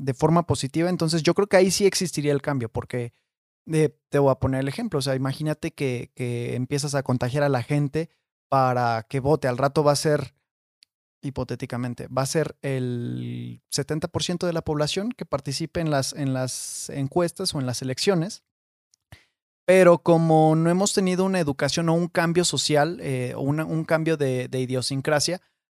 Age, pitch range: 30-49, 135-165 Hz